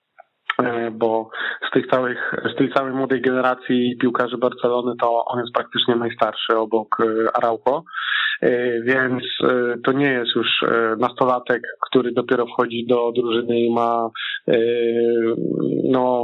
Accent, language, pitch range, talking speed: native, Polish, 120-135 Hz, 120 wpm